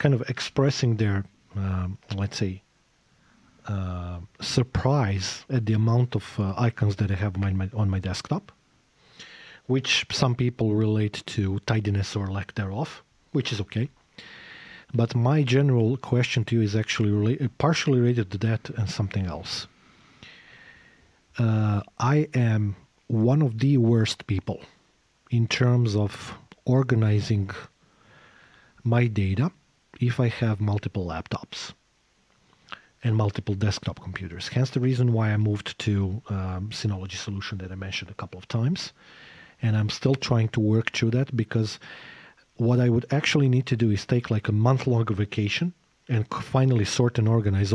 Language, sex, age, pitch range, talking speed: English, male, 40-59, 100-125 Hz, 145 wpm